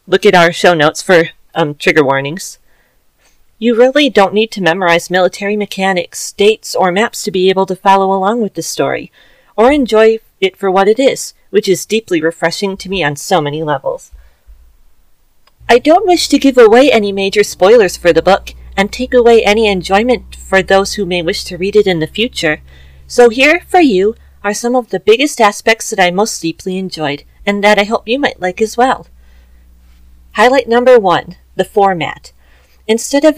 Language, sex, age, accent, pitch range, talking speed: English, female, 40-59, American, 180-240 Hz, 190 wpm